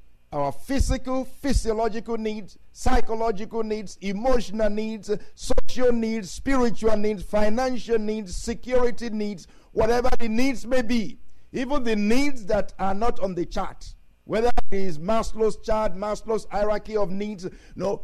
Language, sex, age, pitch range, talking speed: English, male, 50-69, 140-225 Hz, 135 wpm